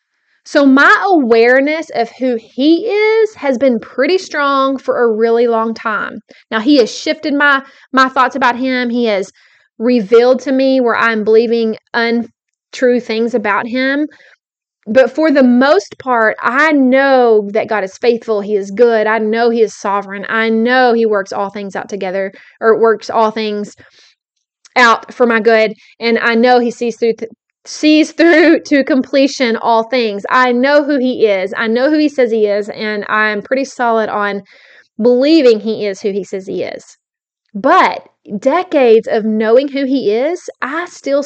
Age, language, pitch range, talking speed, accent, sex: 20-39, English, 225-285 Hz, 175 wpm, American, female